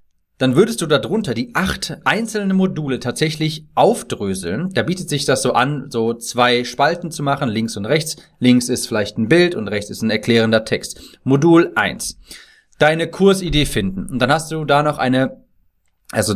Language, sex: German, male